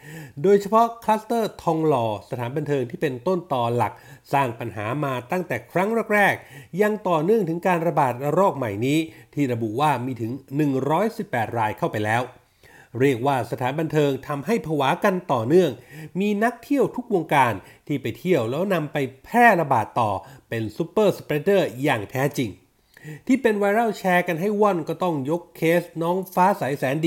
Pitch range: 135-185 Hz